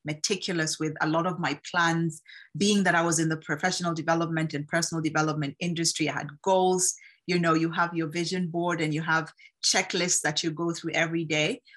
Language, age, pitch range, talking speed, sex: English, 30-49, 155-180 Hz, 200 wpm, female